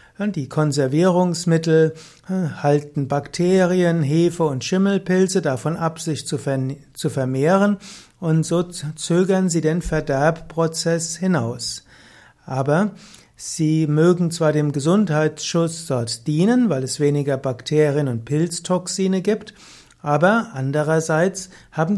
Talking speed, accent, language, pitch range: 100 wpm, German, German, 145-180 Hz